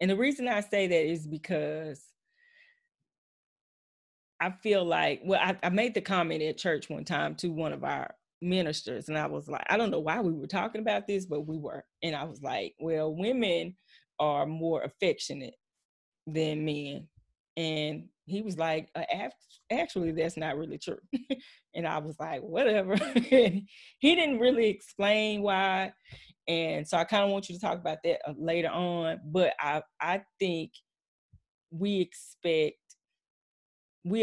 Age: 20-39